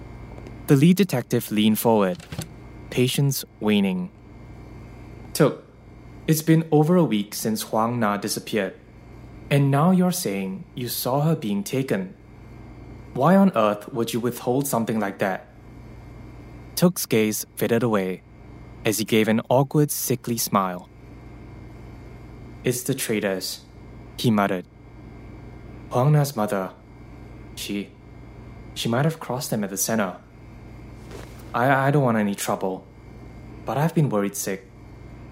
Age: 20-39